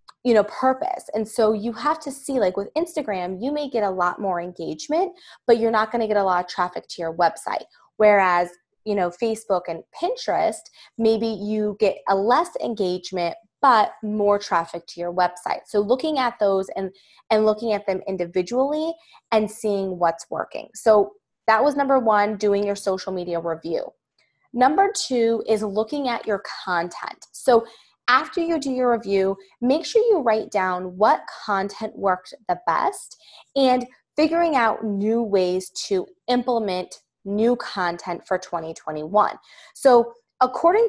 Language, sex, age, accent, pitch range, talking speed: English, female, 20-39, American, 190-265 Hz, 160 wpm